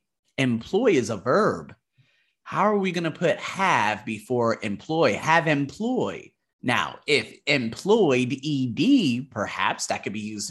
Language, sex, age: English, male, 30-49